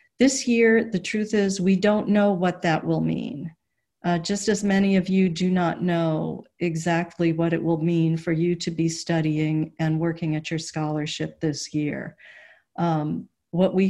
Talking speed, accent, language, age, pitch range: 175 wpm, American, English, 50-69, 165-195 Hz